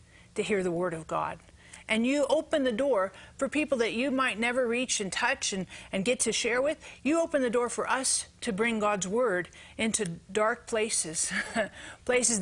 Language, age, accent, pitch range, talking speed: English, 40-59, American, 210-265 Hz, 195 wpm